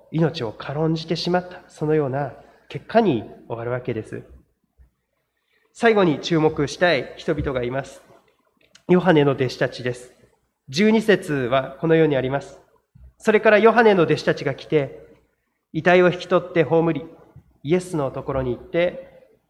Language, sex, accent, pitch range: Japanese, male, native, 145-215 Hz